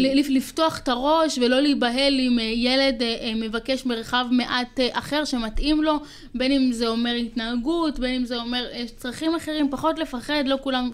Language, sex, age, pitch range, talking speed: Hebrew, female, 20-39, 220-265 Hz, 155 wpm